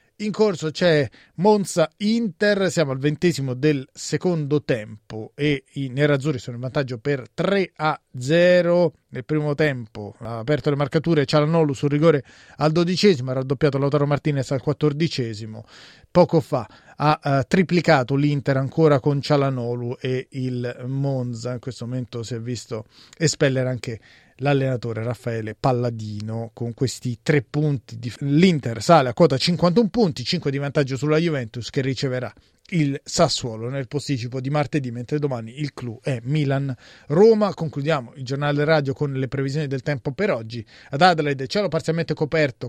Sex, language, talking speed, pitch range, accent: male, Italian, 150 wpm, 125-160 Hz, native